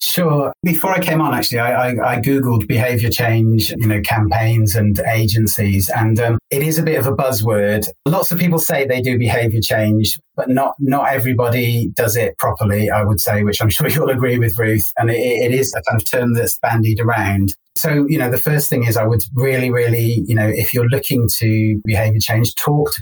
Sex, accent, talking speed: male, British, 215 wpm